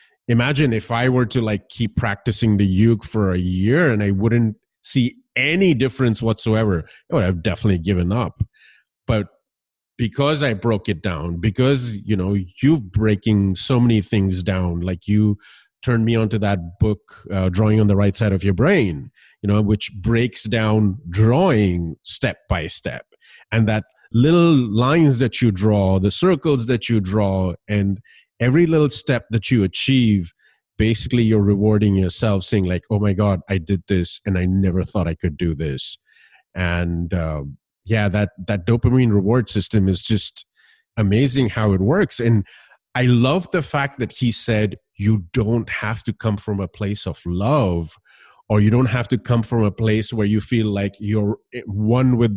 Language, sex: English, male